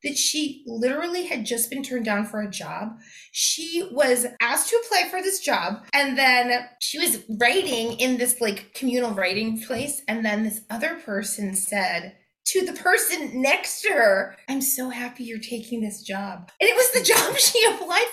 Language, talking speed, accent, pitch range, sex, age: English, 185 wpm, American, 225-320 Hz, female, 20-39